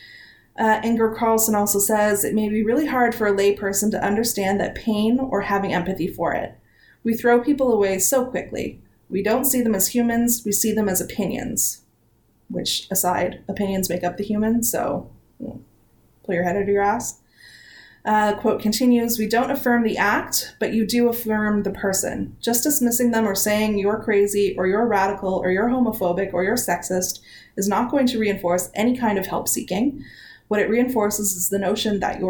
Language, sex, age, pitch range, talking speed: English, female, 30-49, 190-225 Hz, 190 wpm